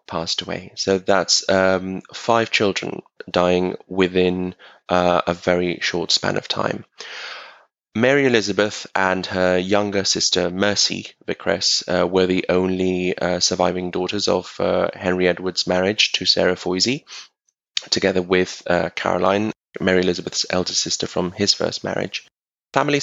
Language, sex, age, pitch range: English, male, 20-39, 90-95 Hz